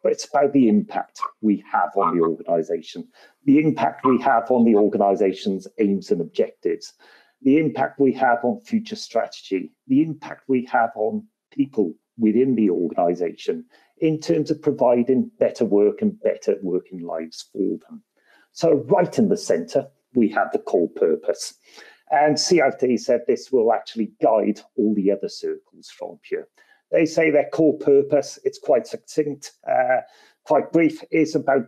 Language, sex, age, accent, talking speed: English, male, 40-59, British, 155 wpm